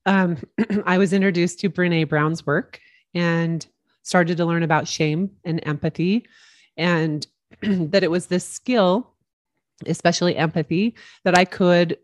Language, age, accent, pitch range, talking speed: English, 30-49, American, 160-190 Hz, 135 wpm